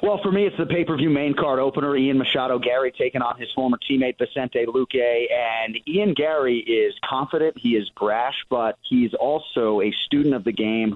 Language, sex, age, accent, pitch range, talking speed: English, male, 30-49, American, 115-145 Hz, 205 wpm